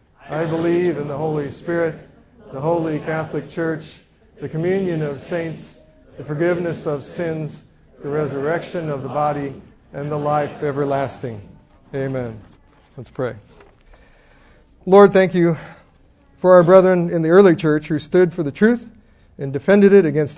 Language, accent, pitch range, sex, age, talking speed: English, American, 145-175 Hz, male, 50-69, 145 wpm